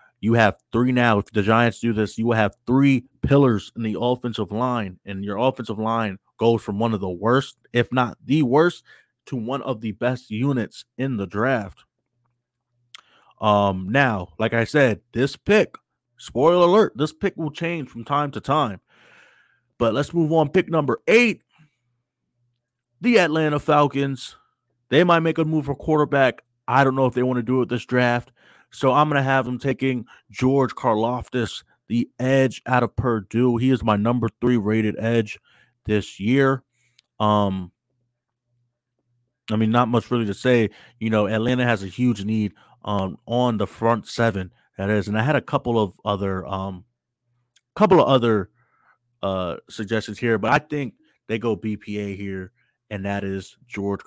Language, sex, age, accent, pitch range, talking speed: English, male, 30-49, American, 105-130 Hz, 175 wpm